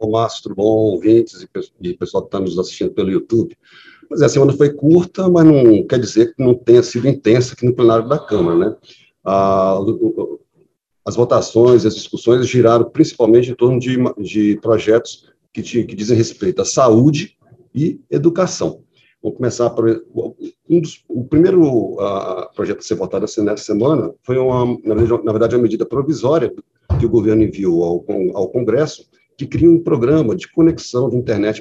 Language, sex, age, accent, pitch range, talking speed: Portuguese, male, 50-69, Brazilian, 115-155 Hz, 170 wpm